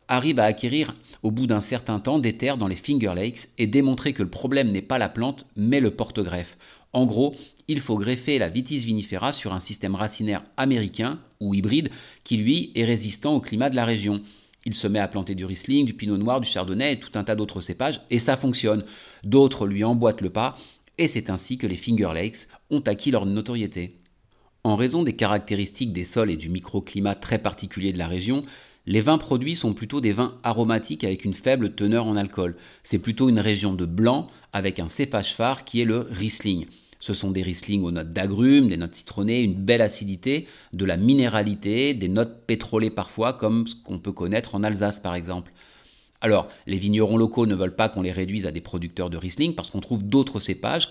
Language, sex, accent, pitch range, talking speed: French, male, French, 95-120 Hz, 210 wpm